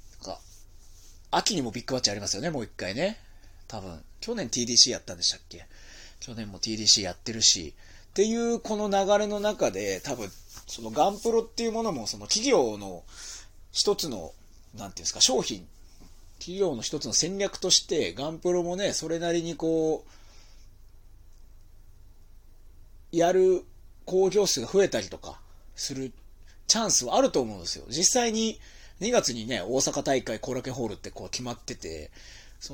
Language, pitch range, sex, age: Japanese, 95-155 Hz, male, 30-49